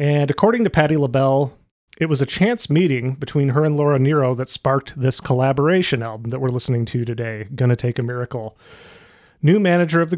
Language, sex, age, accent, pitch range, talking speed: English, male, 30-49, American, 130-150 Hz, 195 wpm